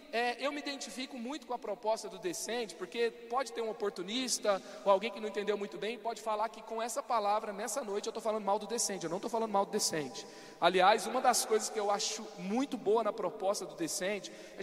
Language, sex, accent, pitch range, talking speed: Portuguese, male, Brazilian, 205-250 Hz, 230 wpm